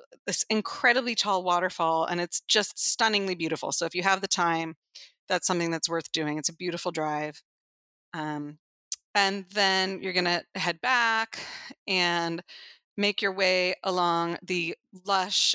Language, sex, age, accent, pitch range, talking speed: English, female, 30-49, American, 170-205 Hz, 145 wpm